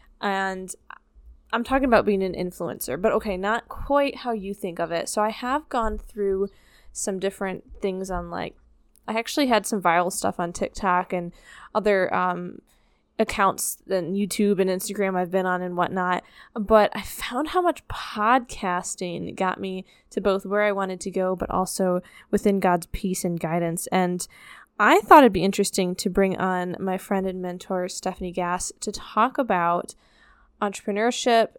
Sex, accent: female, American